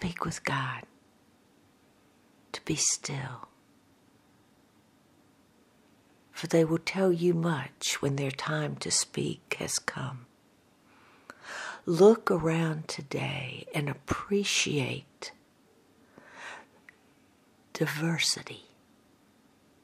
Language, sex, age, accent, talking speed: English, female, 60-79, American, 75 wpm